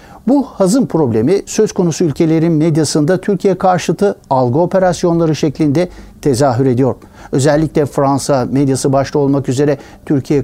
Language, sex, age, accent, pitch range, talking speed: Turkish, male, 60-79, native, 130-150 Hz, 120 wpm